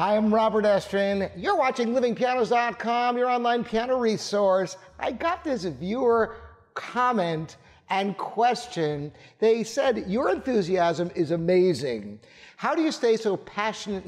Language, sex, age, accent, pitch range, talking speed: English, male, 50-69, American, 175-240 Hz, 125 wpm